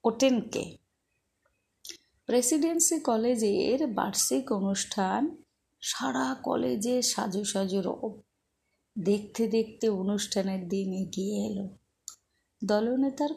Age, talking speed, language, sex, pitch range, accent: 30-49, 70 wpm, Bengali, female, 190-220 Hz, native